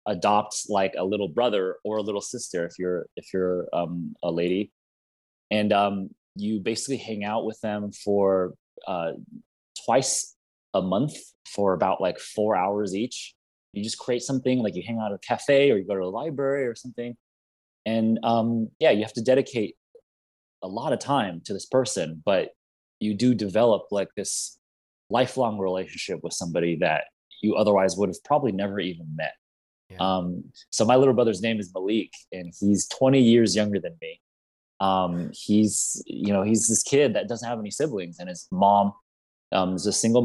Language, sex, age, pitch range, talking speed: English, male, 20-39, 95-115 Hz, 180 wpm